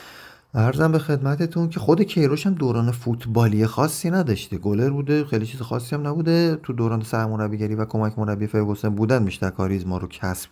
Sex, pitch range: male, 105-135 Hz